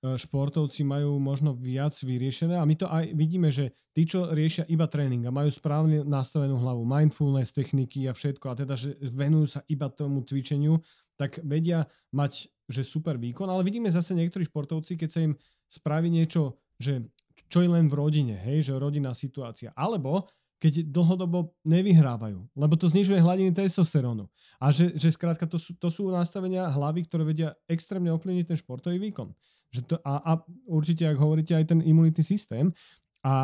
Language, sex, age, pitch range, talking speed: Slovak, male, 30-49, 135-165 Hz, 170 wpm